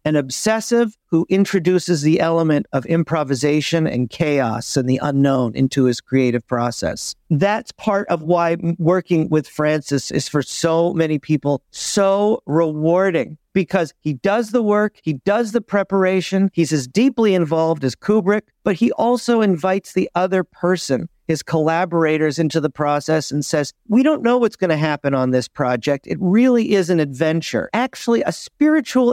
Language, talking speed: English, 160 wpm